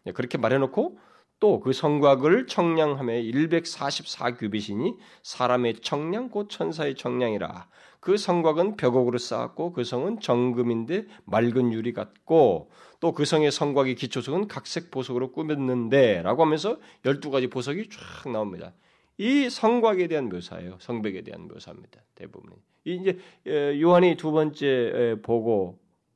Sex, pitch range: male, 110-165 Hz